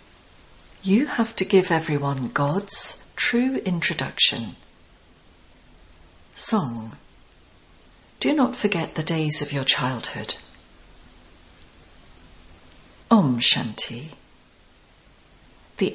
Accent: British